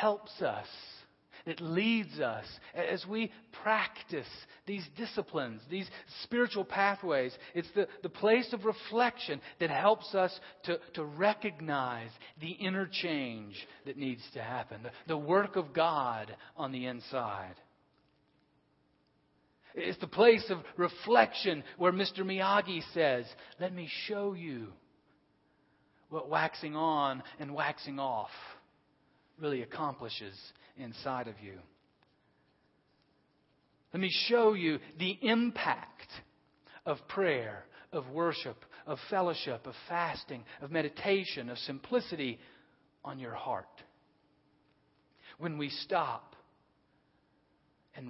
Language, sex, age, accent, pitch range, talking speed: English, male, 40-59, American, 130-195 Hz, 110 wpm